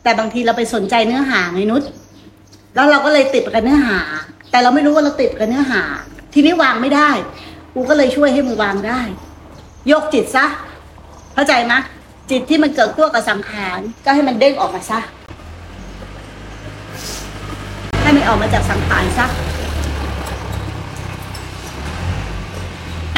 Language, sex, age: Thai, female, 60-79